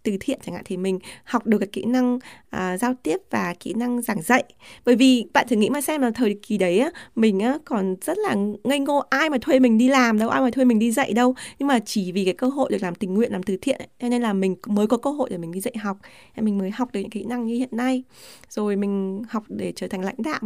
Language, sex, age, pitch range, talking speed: Vietnamese, female, 20-39, 195-255 Hz, 290 wpm